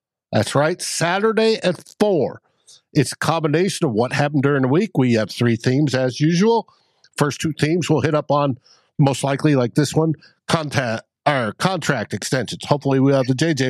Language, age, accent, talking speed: English, 60-79, American, 170 wpm